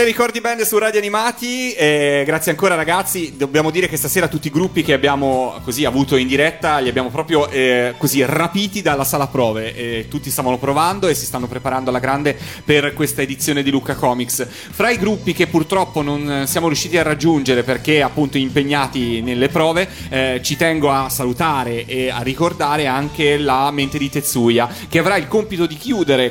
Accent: native